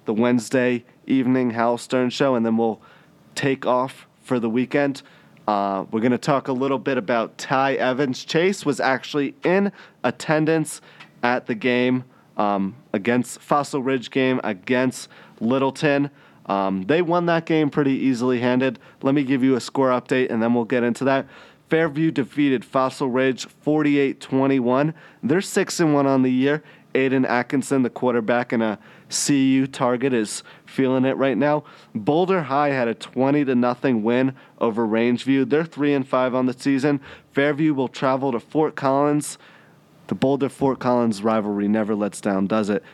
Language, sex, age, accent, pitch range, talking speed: English, male, 30-49, American, 125-145 Hz, 165 wpm